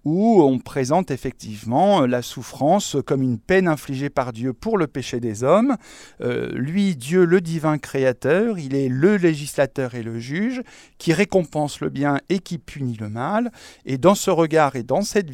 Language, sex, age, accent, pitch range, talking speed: French, male, 50-69, French, 130-175 Hz, 180 wpm